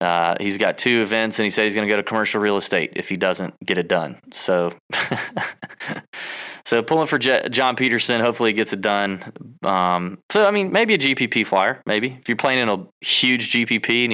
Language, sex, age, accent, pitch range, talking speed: English, male, 20-39, American, 100-120 Hz, 215 wpm